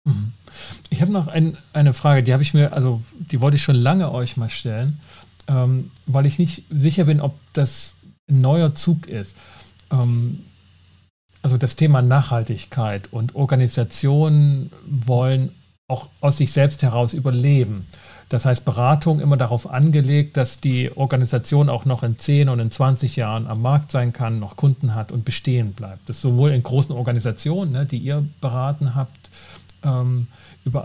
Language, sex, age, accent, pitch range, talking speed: German, male, 40-59, German, 115-145 Hz, 150 wpm